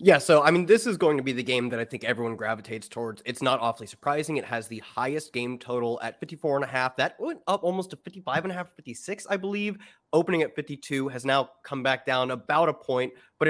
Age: 20-39